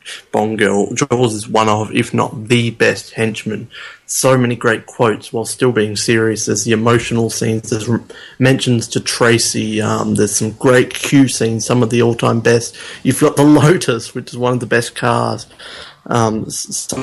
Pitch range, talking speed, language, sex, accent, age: 110-130 Hz, 180 wpm, English, male, Australian, 30-49